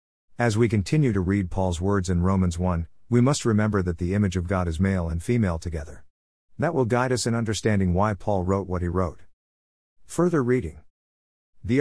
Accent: American